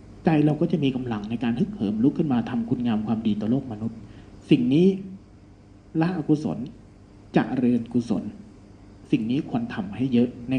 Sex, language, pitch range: male, Thai, 105-160 Hz